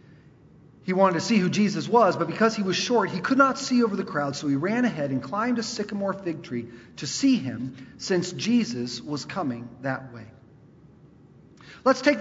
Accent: American